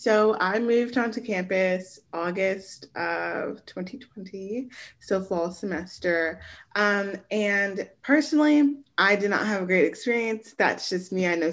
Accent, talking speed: American, 140 wpm